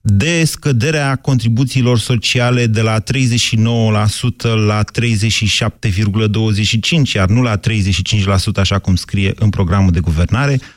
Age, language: 30-49, Romanian